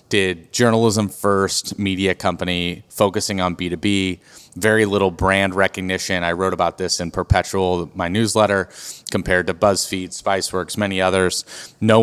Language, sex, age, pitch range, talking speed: English, male, 30-49, 95-115 Hz, 135 wpm